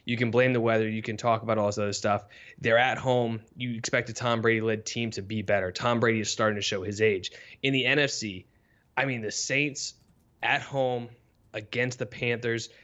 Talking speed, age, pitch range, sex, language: 210 wpm, 20-39, 110-125 Hz, male, English